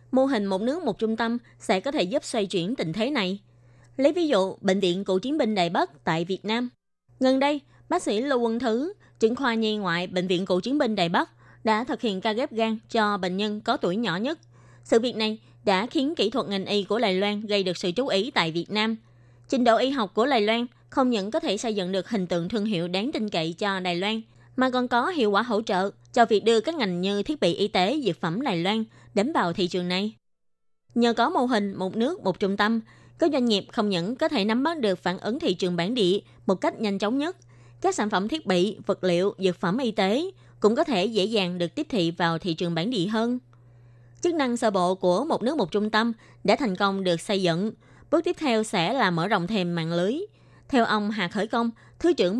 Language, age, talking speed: Vietnamese, 20-39, 250 wpm